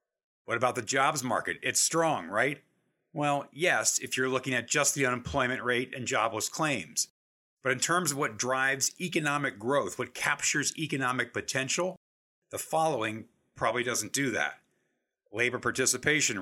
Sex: male